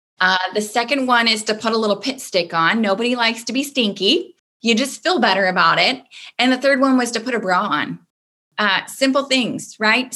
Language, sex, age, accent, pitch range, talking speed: English, female, 20-39, American, 180-230 Hz, 220 wpm